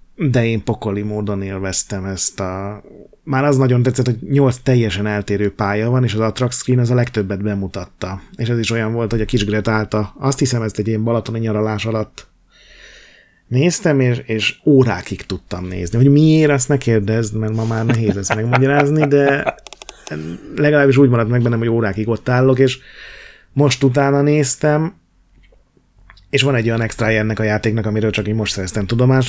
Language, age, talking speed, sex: Hungarian, 30-49, 175 wpm, male